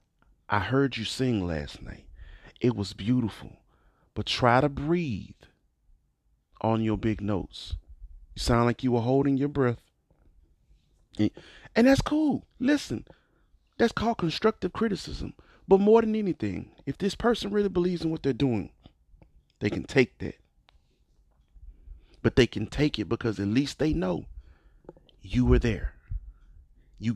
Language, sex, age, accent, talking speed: English, male, 40-59, American, 140 wpm